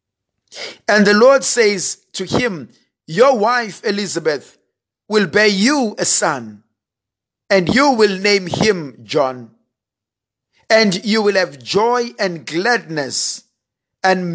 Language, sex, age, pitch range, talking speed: English, male, 50-69, 130-215 Hz, 115 wpm